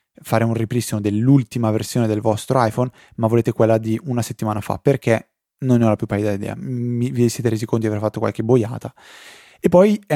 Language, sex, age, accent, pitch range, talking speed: Italian, male, 20-39, native, 105-120 Hz, 205 wpm